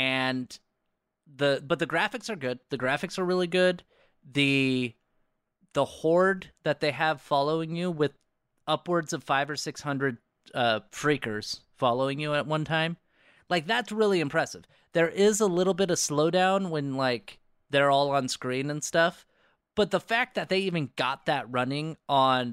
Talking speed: 165 wpm